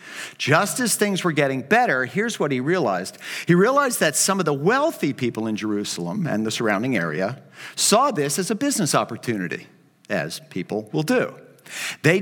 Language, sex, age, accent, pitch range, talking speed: English, male, 50-69, American, 135-185 Hz, 170 wpm